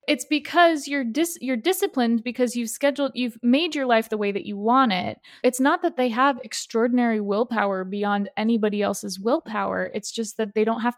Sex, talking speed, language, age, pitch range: female, 195 wpm, English, 20-39, 205-245 Hz